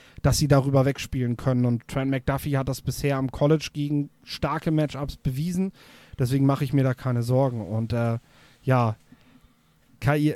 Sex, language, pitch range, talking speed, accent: male, German, 135-175 Hz, 160 wpm, German